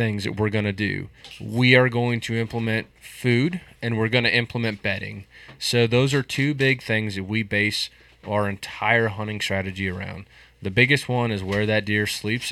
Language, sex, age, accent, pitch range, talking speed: English, male, 20-39, American, 100-120 Hz, 185 wpm